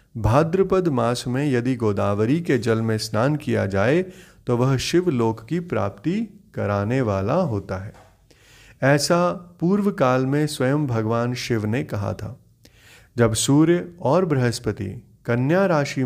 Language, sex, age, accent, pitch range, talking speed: Hindi, male, 30-49, native, 110-150 Hz, 135 wpm